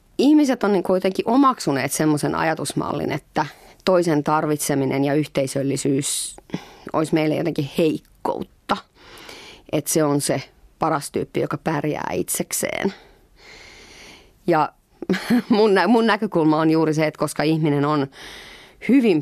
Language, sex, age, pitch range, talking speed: Finnish, female, 30-49, 150-215 Hz, 120 wpm